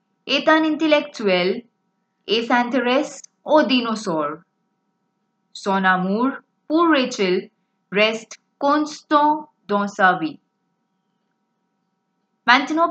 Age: 20-39